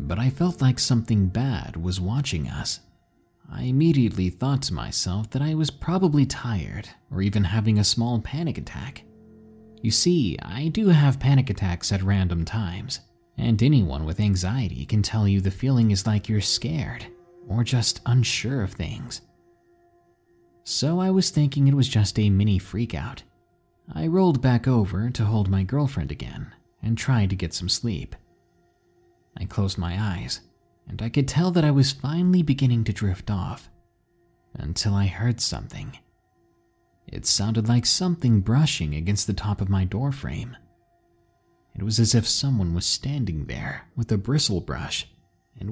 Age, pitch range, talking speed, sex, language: 30-49, 95-135 Hz, 160 wpm, male, English